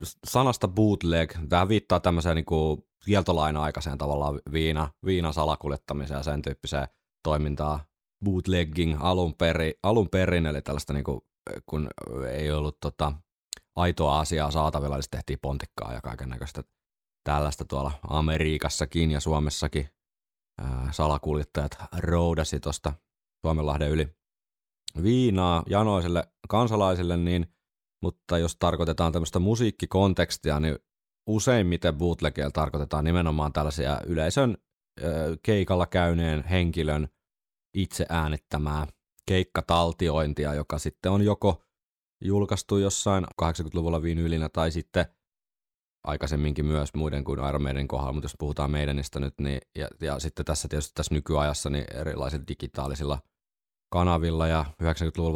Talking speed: 115 wpm